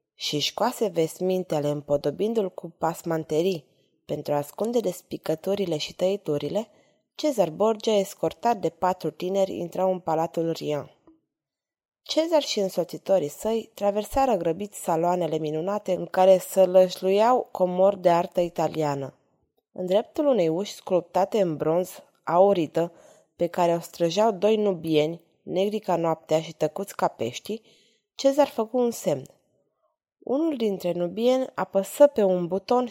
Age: 20-39